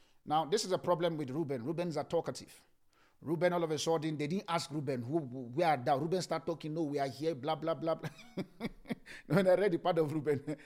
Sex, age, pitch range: male, 50-69, 150-180 Hz